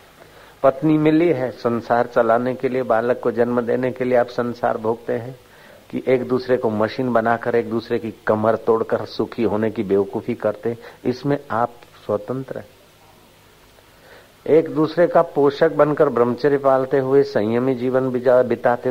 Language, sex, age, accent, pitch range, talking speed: Hindi, male, 50-69, native, 115-135 Hz, 150 wpm